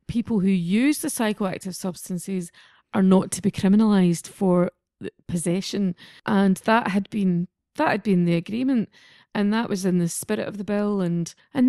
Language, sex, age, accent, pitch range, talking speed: English, female, 30-49, British, 185-225 Hz, 170 wpm